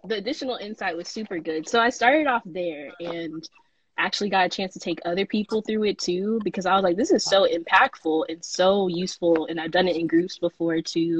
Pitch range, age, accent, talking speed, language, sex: 170-230 Hz, 10-29, American, 225 wpm, English, female